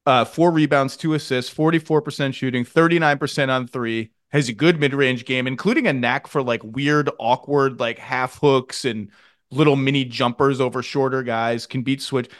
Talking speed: 175 wpm